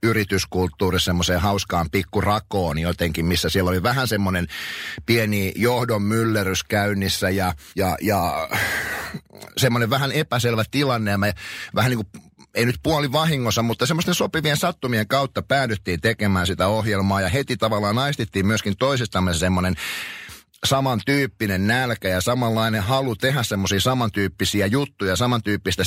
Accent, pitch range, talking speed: native, 100-135 Hz, 130 wpm